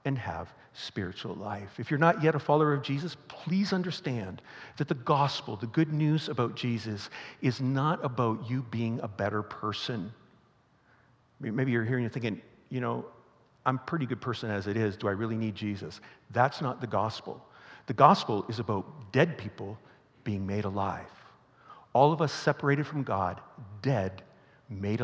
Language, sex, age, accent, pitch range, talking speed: English, male, 50-69, American, 110-150 Hz, 175 wpm